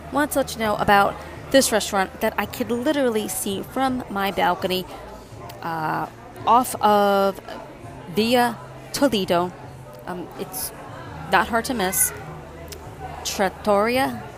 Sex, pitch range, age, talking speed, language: female, 175-235 Hz, 20-39, 120 wpm, English